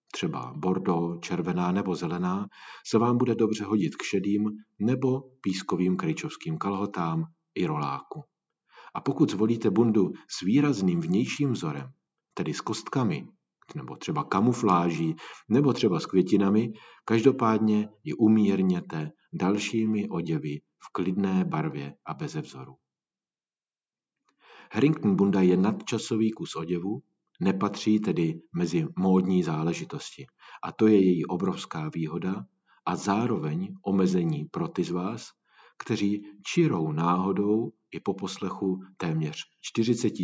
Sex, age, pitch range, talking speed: male, 50-69, 90-115 Hz, 120 wpm